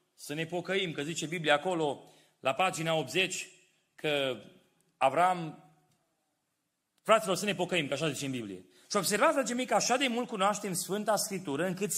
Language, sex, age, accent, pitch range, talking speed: Romanian, male, 30-49, native, 150-205 Hz, 160 wpm